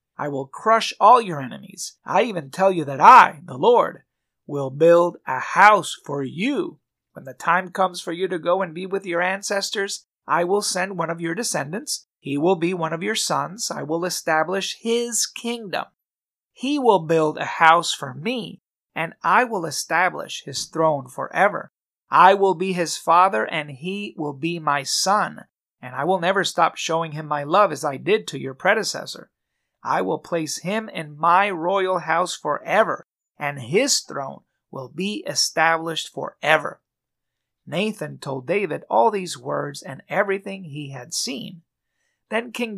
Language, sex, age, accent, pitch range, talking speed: English, male, 30-49, American, 150-200 Hz, 170 wpm